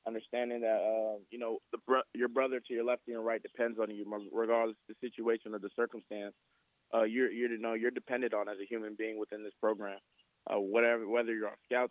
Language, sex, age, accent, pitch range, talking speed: English, male, 20-39, American, 110-125 Hz, 225 wpm